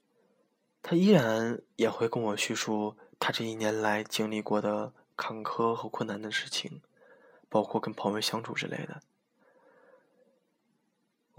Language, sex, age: Chinese, male, 20-39